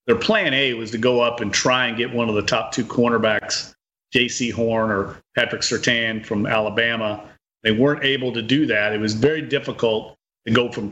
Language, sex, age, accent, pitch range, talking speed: English, male, 40-59, American, 110-140 Hz, 205 wpm